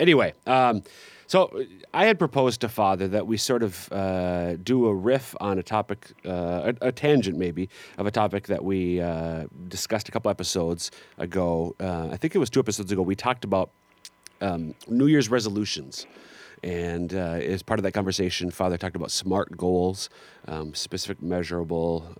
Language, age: English, 30-49